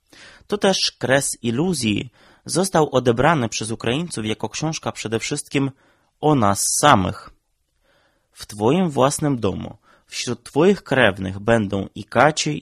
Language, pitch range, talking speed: Polish, 105-140 Hz, 120 wpm